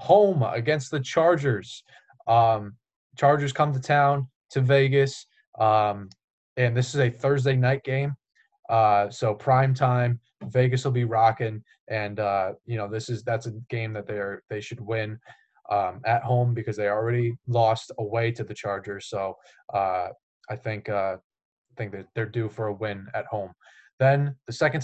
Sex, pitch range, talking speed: male, 110-130 Hz, 170 wpm